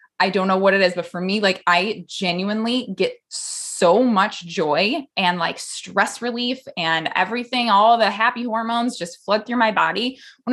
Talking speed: 180 wpm